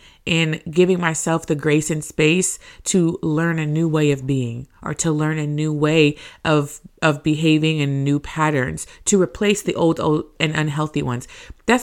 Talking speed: 180 wpm